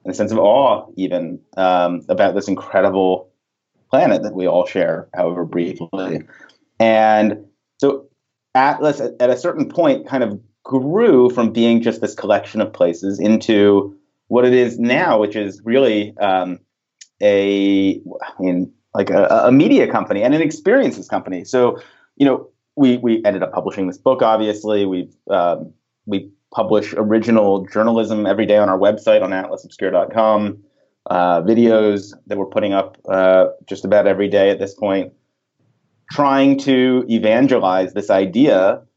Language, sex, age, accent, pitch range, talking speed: English, male, 30-49, American, 100-125 Hz, 150 wpm